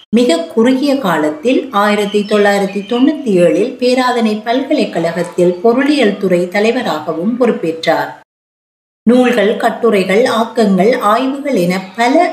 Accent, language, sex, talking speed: native, Tamil, female, 95 wpm